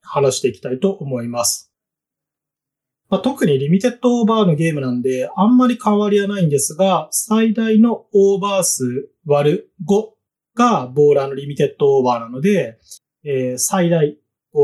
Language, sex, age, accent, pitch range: Japanese, male, 30-49, native, 135-190 Hz